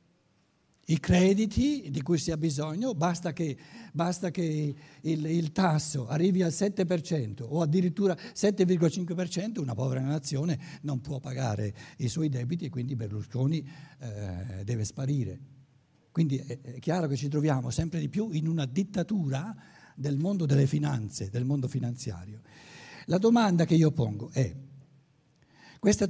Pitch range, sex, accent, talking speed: 130-185 Hz, male, native, 140 wpm